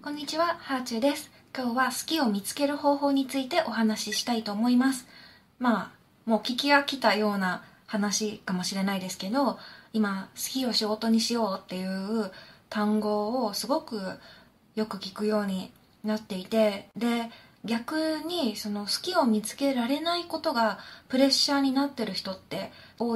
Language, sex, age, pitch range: Japanese, female, 20-39, 205-275 Hz